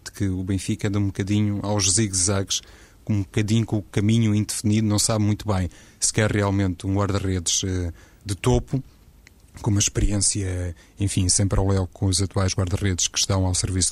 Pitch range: 95-110 Hz